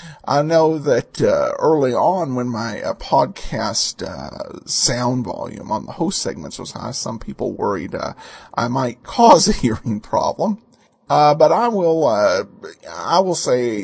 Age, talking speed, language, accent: 50-69, 160 wpm, English, American